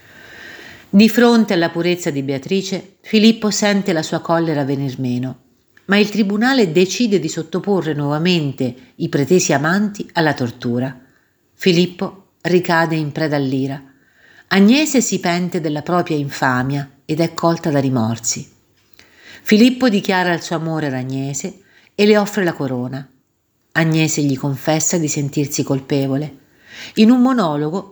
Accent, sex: native, female